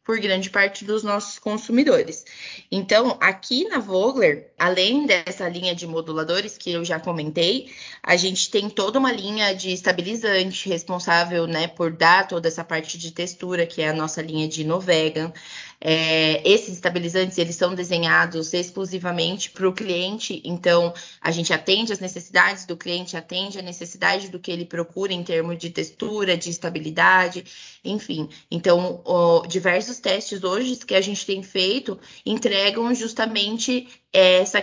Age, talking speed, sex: 20-39, 150 wpm, female